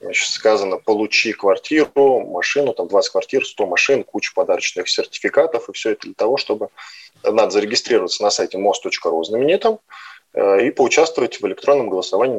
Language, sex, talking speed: Russian, male, 140 wpm